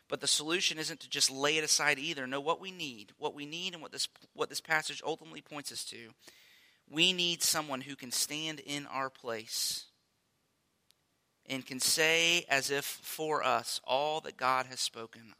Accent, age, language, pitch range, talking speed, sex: American, 30-49, English, 125-145 Hz, 185 wpm, male